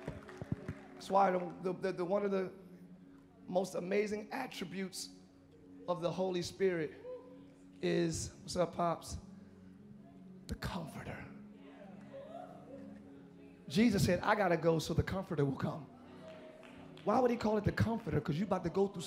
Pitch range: 165-210 Hz